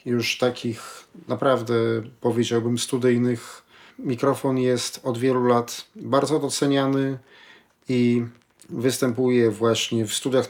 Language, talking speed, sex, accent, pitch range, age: Polish, 95 wpm, male, native, 120-140 Hz, 40-59